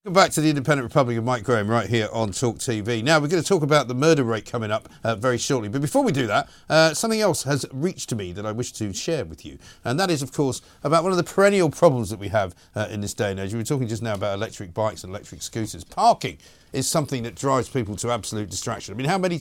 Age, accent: 50-69, British